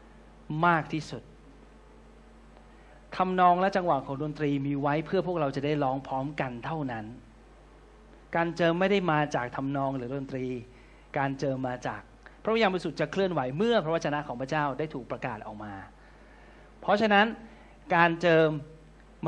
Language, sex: Thai, male